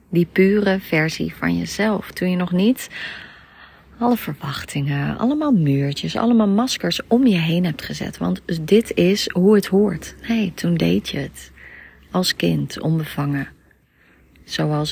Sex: female